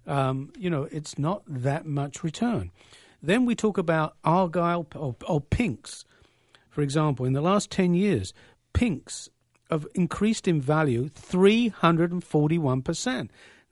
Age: 50-69